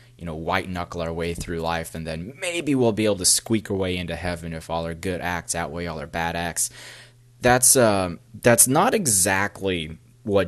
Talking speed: 205 wpm